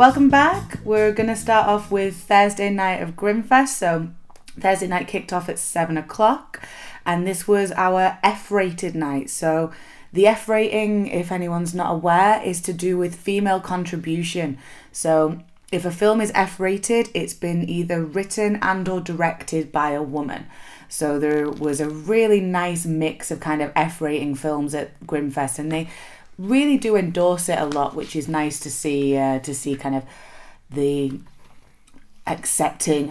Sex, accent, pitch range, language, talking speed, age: female, British, 145-200 Hz, English, 165 wpm, 20-39